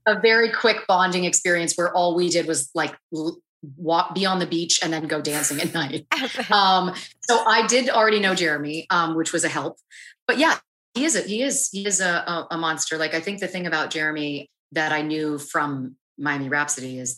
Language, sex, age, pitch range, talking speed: English, female, 30-49, 140-175 Hz, 205 wpm